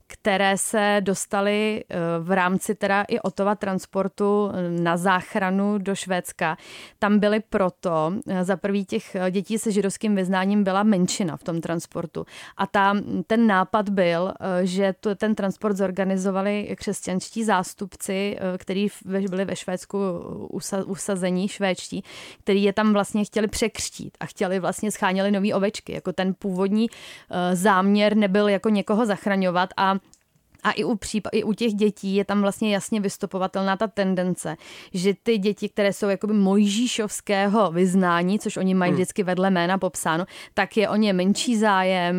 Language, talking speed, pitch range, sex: Czech, 150 wpm, 185-210 Hz, female